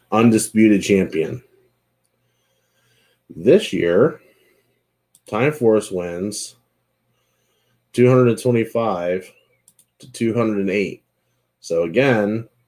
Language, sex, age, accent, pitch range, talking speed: English, male, 30-49, American, 90-105 Hz, 55 wpm